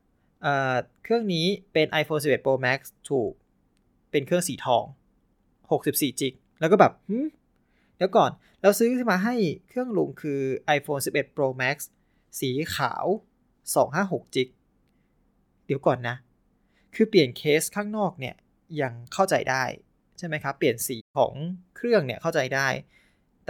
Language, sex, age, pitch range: Thai, male, 20-39, 135-190 Hz